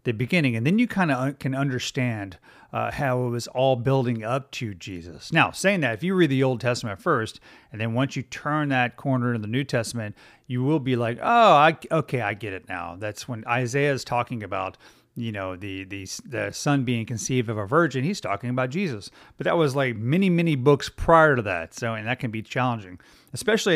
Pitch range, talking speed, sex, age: 110-140 Hz, 220 wpm, male, 40-59